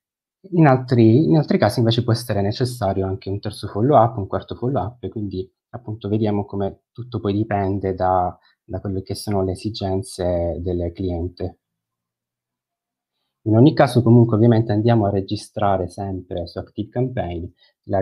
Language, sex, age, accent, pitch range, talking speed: Italian, male, 30-49, native, 95-115 Hz, 150 wpm